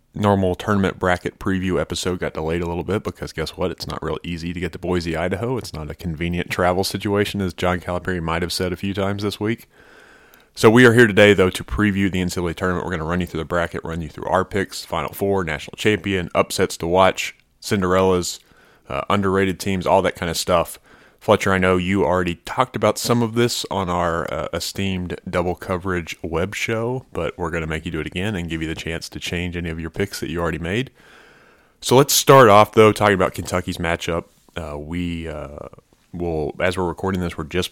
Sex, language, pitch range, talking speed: male, English, 80-95 Hz, 225 wpm